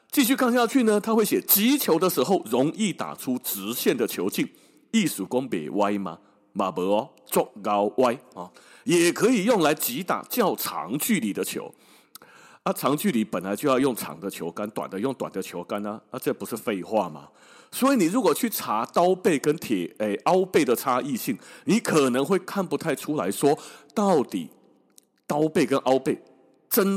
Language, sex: Chinese, male